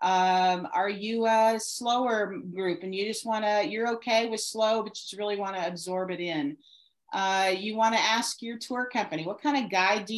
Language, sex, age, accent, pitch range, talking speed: English, female, 40-59, American, 200-245 Hz, 220 wpm